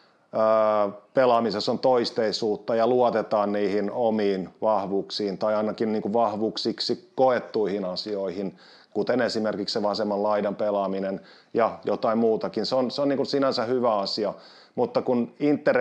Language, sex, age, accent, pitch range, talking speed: Finnish, male, 30-49, native, 105-120 Hz, 125 wpm